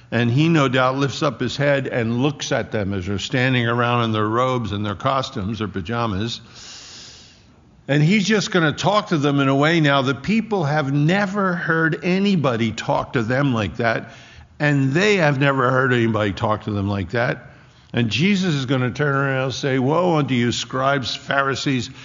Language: English